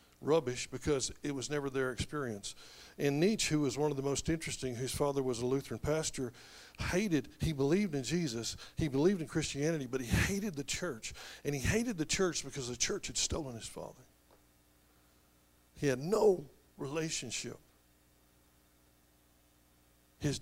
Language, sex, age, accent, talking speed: English, male, 60-79, American, 155 wpm